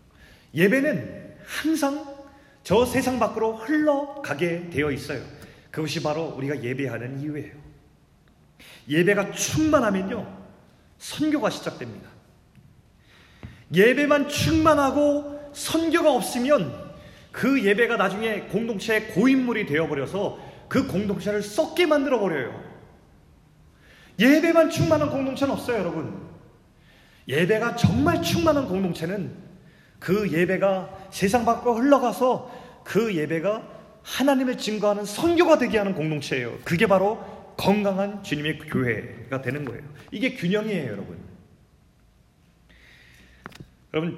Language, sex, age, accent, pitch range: Korean, male, 30-49, native, 150-235 Hz